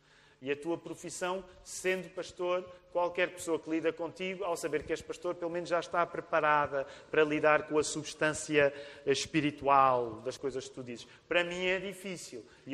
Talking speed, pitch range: 175 wpm, 155-205 Hz